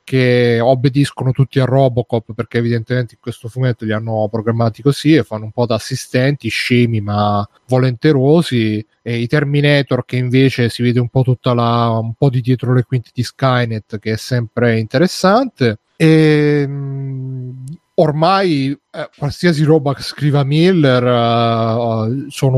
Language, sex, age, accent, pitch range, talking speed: Italian, male, 30-49, native, 115-135 Hz, 145 wpm